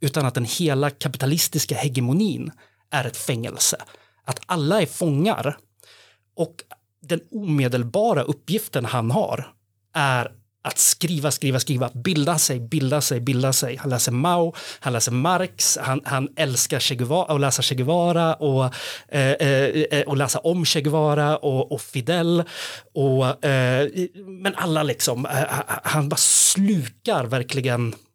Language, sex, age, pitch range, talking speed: Swedish, male, 30-49, 125-155 Hz, 120 wpm